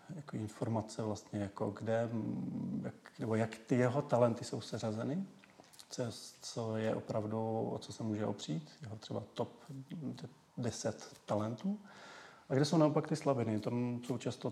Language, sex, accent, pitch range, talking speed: Czech, male, native, 110-135 Hz, 145 wpm